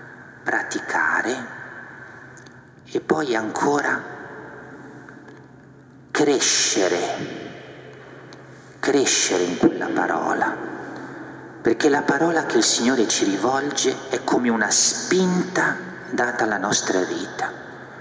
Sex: male